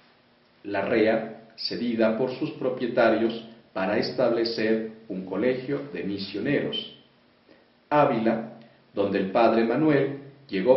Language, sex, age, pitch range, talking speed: Spanish, male, 50-69, 110-150 Hz, 100 wpm